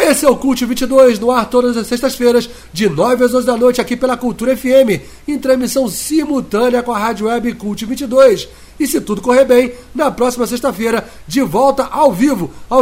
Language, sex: English, male